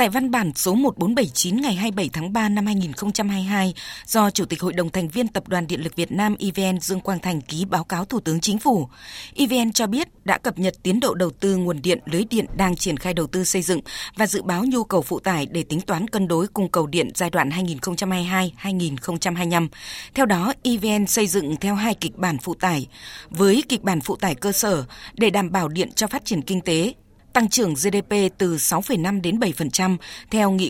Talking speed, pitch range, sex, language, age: 215 wpm, 175-210 Hz, female, Vietnamese, 20-39